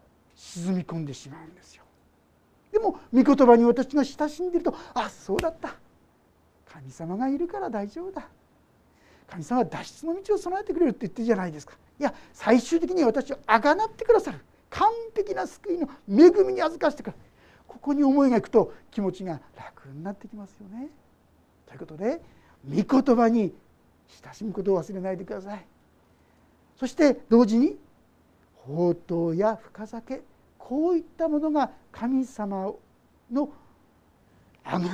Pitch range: 170-275 Hz